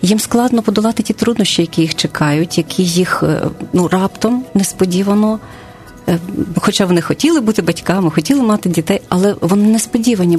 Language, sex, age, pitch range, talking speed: Ukrainian, female, 40-59, 175-225 Hz, 140 wpm